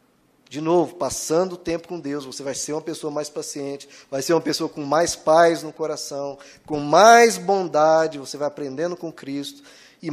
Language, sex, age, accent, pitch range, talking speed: Portuguese, male, 20-39, Brazilian, 170-235 Hz, 190 wpm